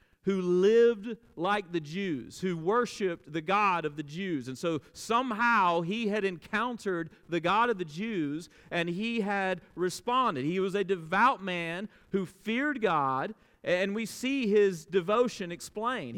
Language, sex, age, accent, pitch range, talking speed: English, male, 40-59, American, 140-190 Hz, 150 wpm